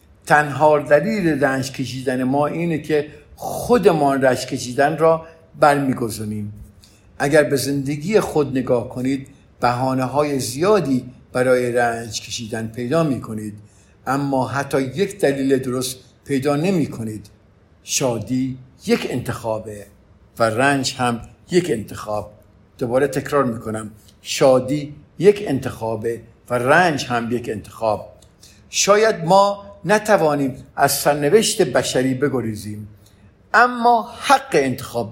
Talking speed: 110 wpm